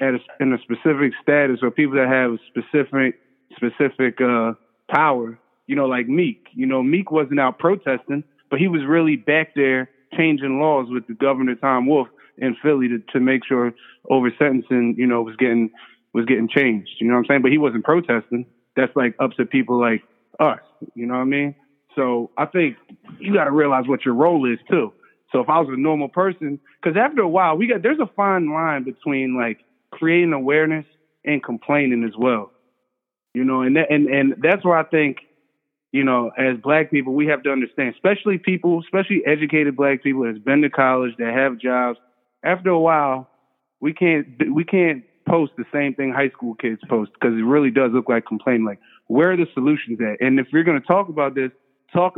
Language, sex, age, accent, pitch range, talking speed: English, male, 20-39, American, 125-150 Hz, 200 wpm